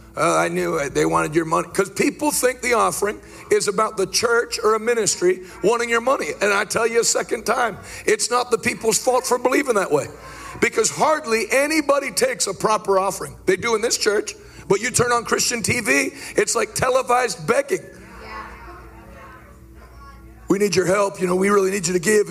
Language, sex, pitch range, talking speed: English, male, 205-290 Hz, 195 wpm